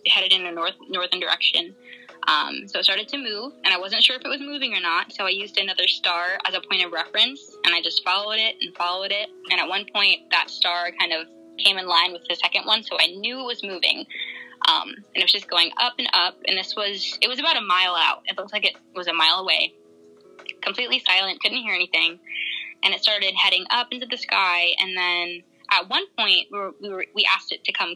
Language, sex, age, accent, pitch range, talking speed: English, female, 10-29, American, 180-230 Hz, 245 wpm